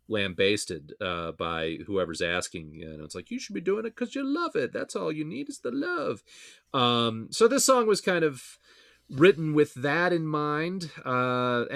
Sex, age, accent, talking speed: male, 30-49, American, 190 wpm